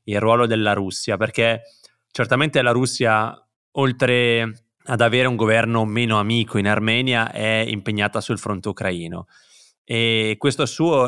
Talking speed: 135 wpm